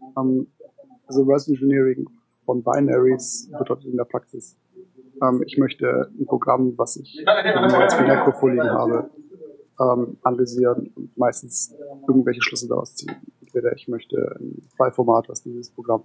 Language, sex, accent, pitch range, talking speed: German, male, German, 125-145 Hz, 145 wpm